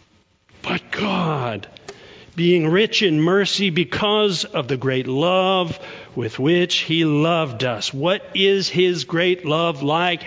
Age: 50-69